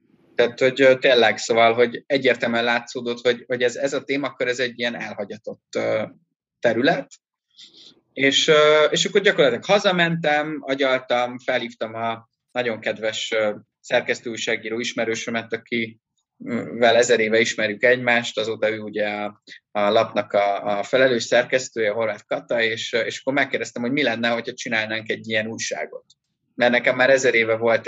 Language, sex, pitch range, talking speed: Hungarian, male, 115-140 Hz, 145 wpm